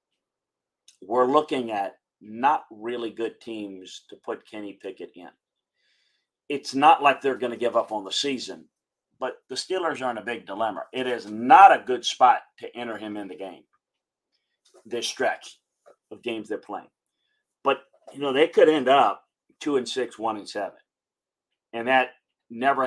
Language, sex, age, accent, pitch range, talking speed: English, male, 40-59, American, 105-125 Hz, 170 wpm